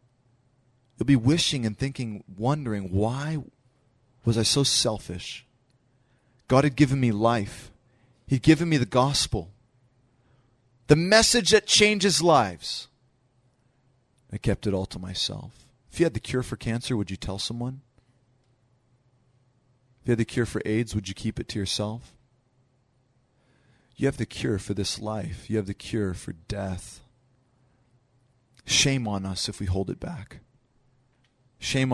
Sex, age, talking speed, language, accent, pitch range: male, 30-49, 145 wpm, English, American, 110-130 Hz